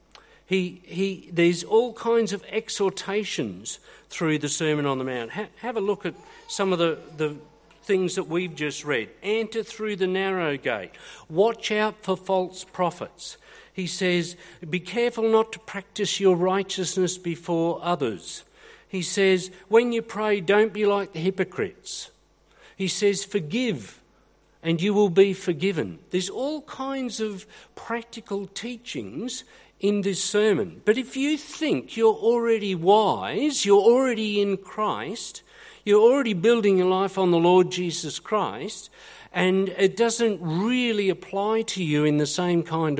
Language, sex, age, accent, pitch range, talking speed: English, male, 50-69, Australian, 180-230 Hz, 150 wpm